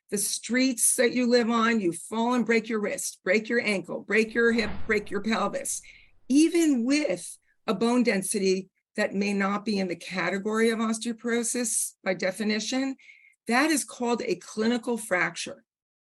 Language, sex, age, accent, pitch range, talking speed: English, female, 50-69, American, 195-240 Hz, 160 wpm